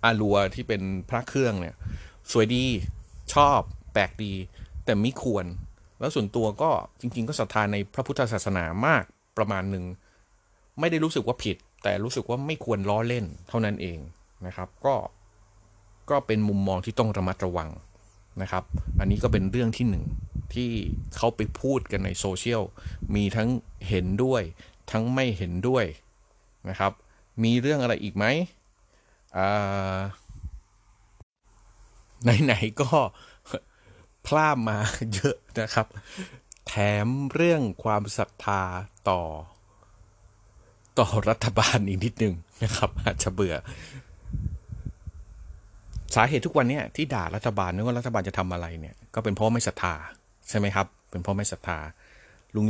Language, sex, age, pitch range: Thai, male, 30-49, 95-115 Hz